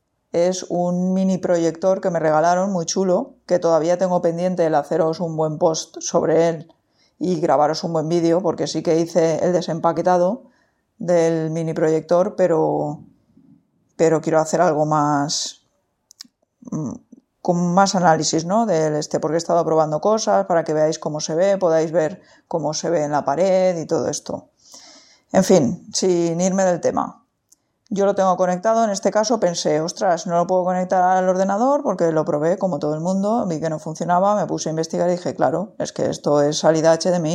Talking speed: 180 wpm